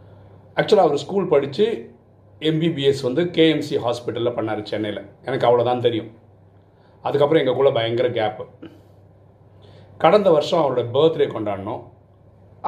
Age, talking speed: 40-59, 110 wpm